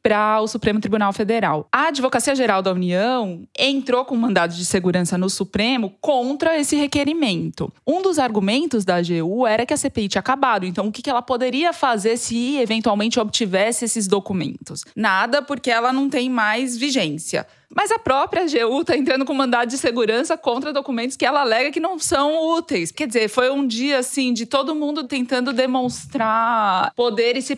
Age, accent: 20-39, Brazilian